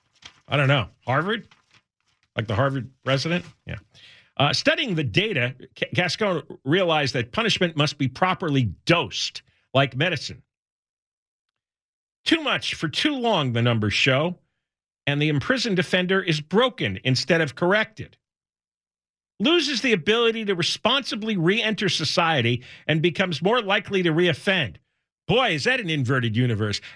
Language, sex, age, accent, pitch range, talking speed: English, male, 50-69, American, 130-210 Hz, 135 wpm